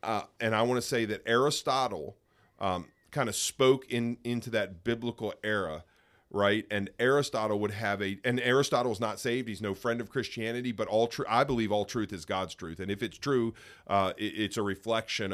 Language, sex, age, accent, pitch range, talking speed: English, male, 40-59, American, 100-125 Hz, 205 wpm